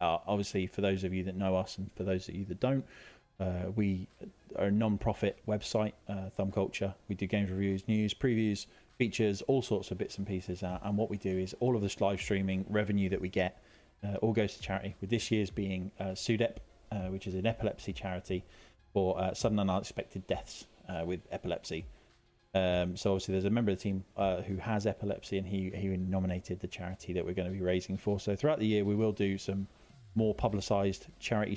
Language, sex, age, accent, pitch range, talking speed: English, male, 20-39, British, 95-105 Hz, 220 wpm